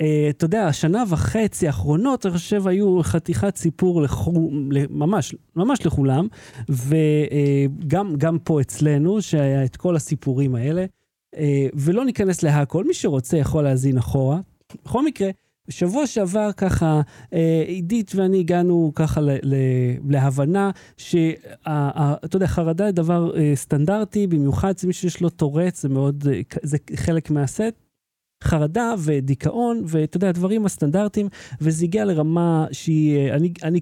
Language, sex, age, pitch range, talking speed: Hebrew, male, 40-59, 140-180 Hz, 115 wpm